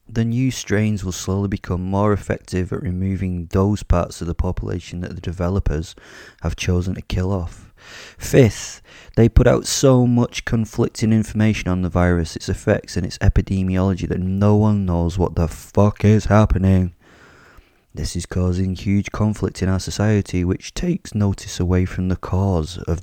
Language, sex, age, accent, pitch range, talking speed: English, male, 20-39, British, 90-105 Hz, 165 wpm